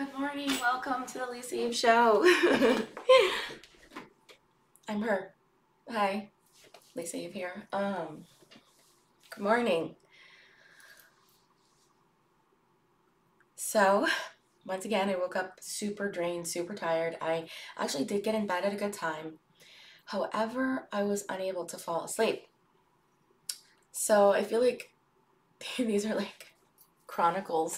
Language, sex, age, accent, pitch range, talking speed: English, female, 20-39, American, 180-235 Hz, 110 wpm